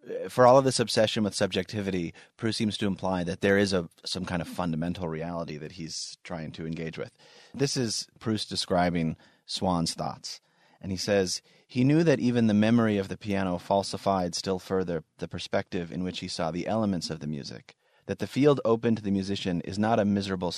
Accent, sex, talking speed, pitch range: American, male, 200 wpm, 85-100 Hz